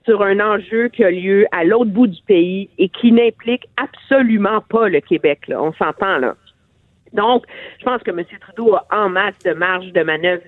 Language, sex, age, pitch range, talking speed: French, female, 50-69, 180-235 Hz, 200 wpm